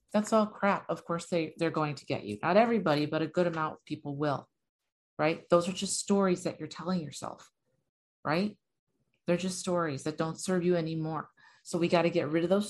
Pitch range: 155-185 Hz